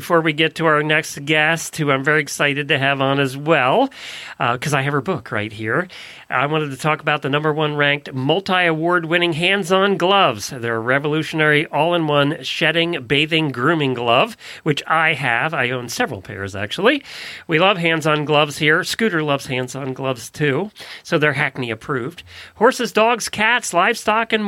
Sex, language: male, English